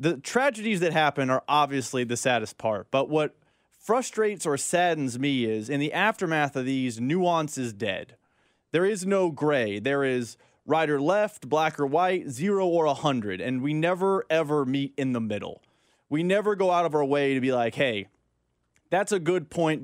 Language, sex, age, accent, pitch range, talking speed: English, male, 20-39, American, 135-180 Hz, 190 wpm